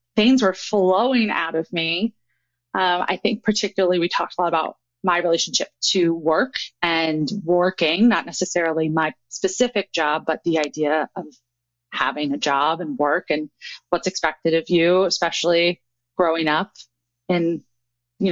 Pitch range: 165-210 Hz